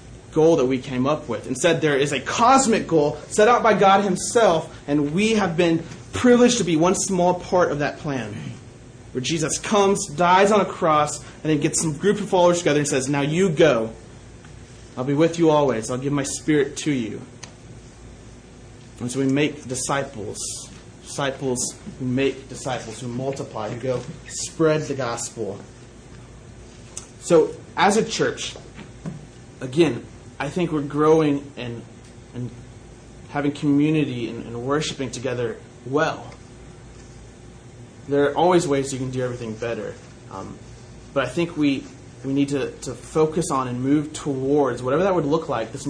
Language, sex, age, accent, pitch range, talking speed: English, male, 30-49, American, 120-160 Hz, 160 wpm